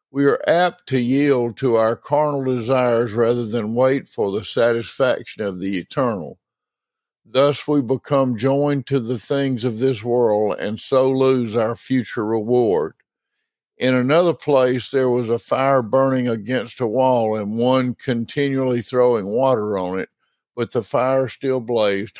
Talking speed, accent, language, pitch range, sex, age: 155 wpm, American, English, 115-135 Hz, male, 60-79